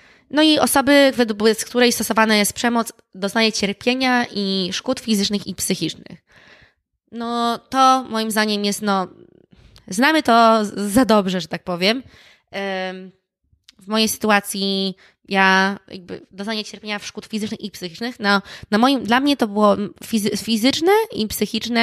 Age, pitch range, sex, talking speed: 20-39, 190-230 Hz, female, 140 wpm